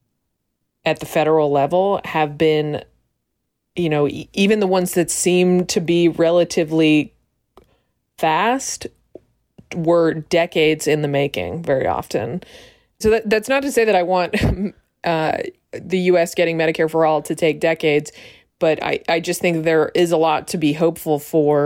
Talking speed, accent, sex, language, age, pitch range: 160 wpm, American, female, English, 20-39, 150-175 Hz